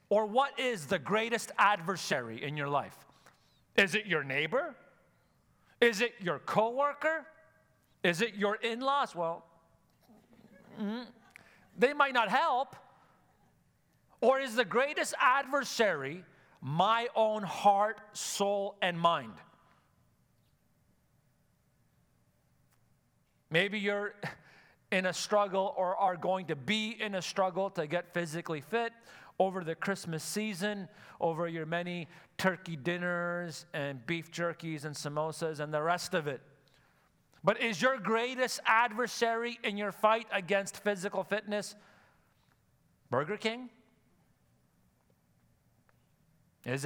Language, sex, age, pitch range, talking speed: English, male, 40-59, 160-215 Hz, 110 wpm